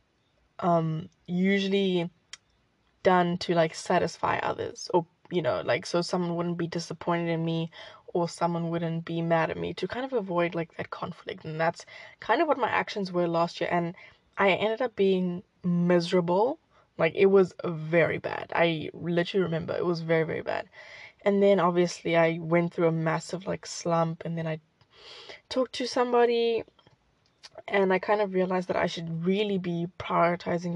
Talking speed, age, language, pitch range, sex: 170 wpm, 10-29, English, 170-200 Hz, female